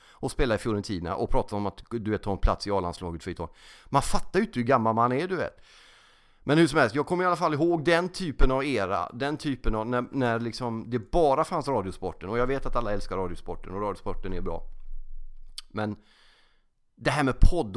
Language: English